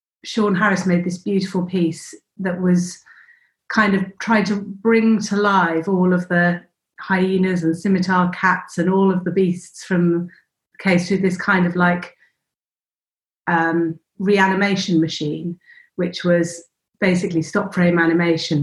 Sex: female